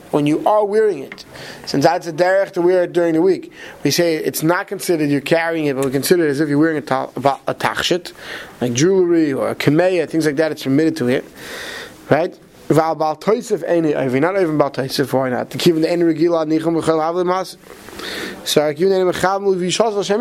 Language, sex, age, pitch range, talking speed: English, male, 30-49, 155-205 Hz, 185 wpm